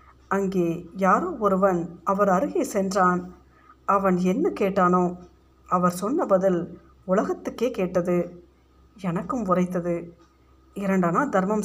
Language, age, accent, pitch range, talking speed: Tamil, 50-69, native, 175-210 Hz, 95 wpm